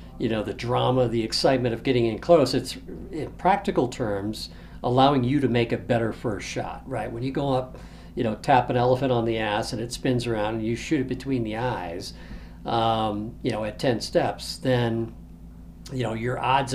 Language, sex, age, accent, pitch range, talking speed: English, male, 60-79, American, 105-130 Hz, 205 wpm